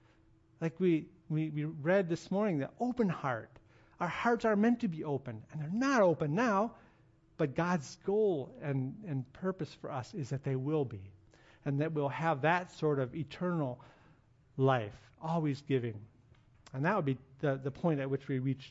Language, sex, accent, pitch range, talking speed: English, male, American, 130-160 Hz, 185 wpm